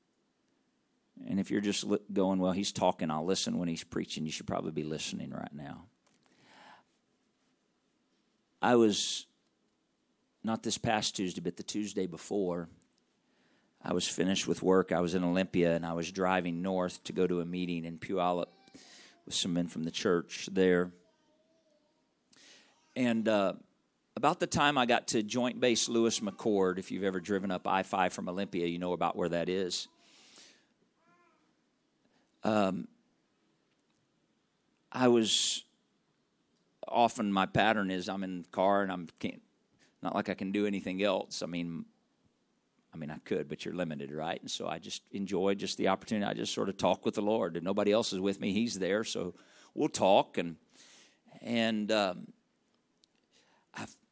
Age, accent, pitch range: 50-69, American, 90-115 Hz